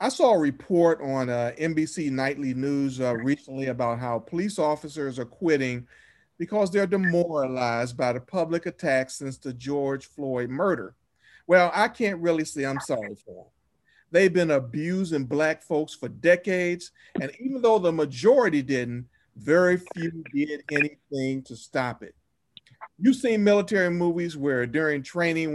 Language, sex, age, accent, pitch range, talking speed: English, male, 50-69, American, 140-190 Hz, 155 wpm